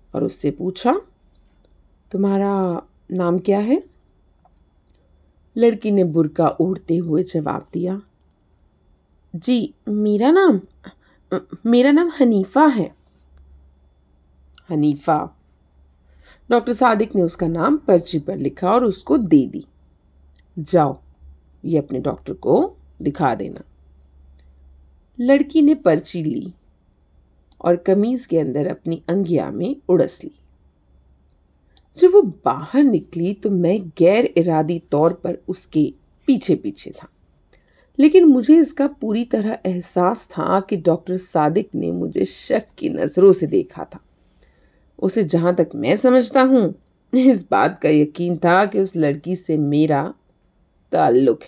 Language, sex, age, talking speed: Hindi, female, 50-69, 120 wpm